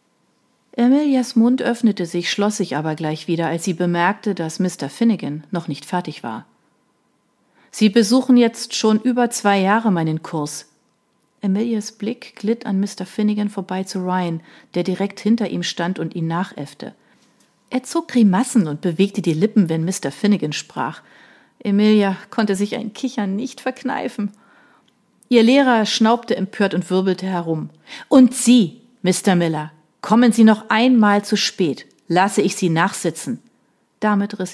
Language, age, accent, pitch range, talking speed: German, 40-59, German, 175-225 Hz, 150 wpm